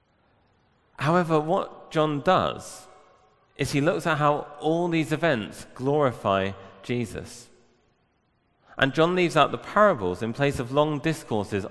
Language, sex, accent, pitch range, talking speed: English, male, British, 110-145 Hz, 130 wpm